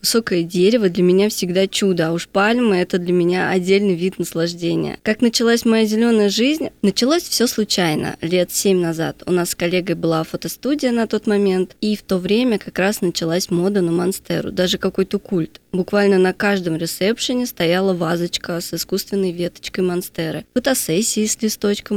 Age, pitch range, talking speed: 20-39, 180-225 Hz, 165 wpm